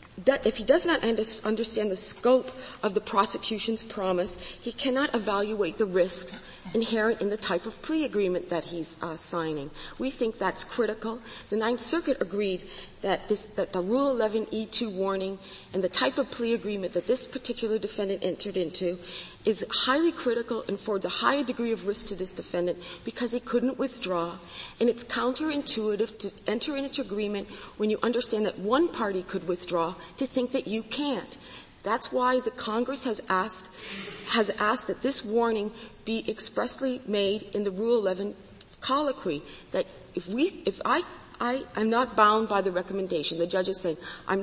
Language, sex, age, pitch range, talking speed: English, female, 40-59, 185-235 Hz, 170 wpm